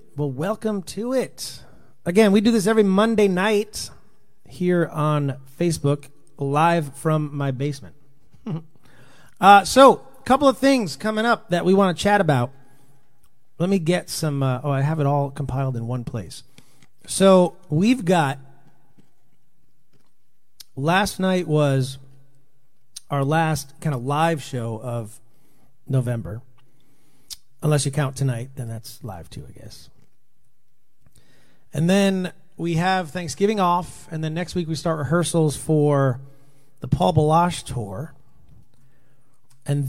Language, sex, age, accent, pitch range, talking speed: English, male, 40-59, American, 135-175 Hz, 135 wpm